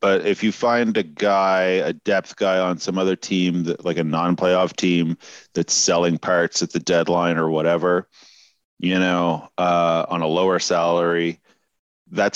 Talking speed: 160 wpm